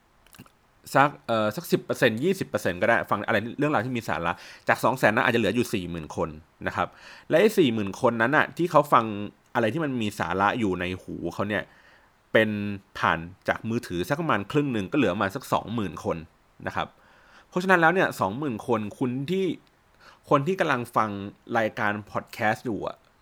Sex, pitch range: male, 100-130 Hz